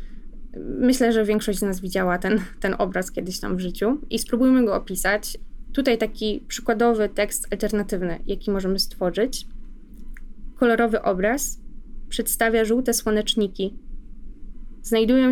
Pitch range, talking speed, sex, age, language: 195-230 Hz, 120 wpm, female, 20-39, Polish